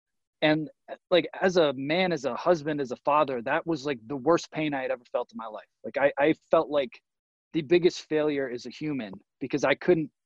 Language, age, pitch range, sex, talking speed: English, 20-39, 140-180 Hz, male, 220 wpm